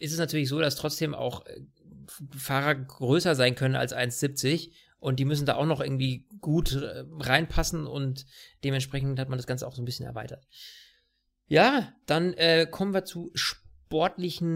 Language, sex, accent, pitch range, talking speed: German, male, German, 125-155 Hz, 165 wpm